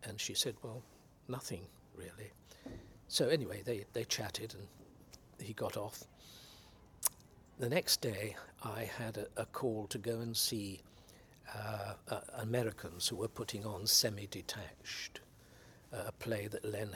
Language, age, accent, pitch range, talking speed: English, 60-79, British, 95-120 Hz, 140 wpm